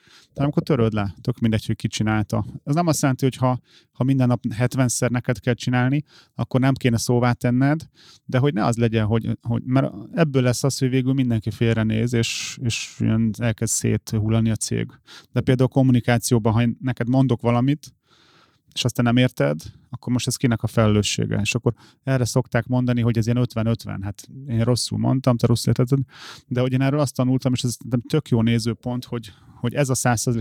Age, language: 30-49, Hungarian